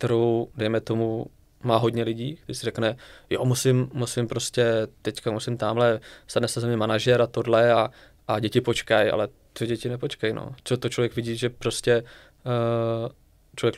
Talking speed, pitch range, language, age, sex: 180 wpm, 110-120 Hz, Czech, 20-39, male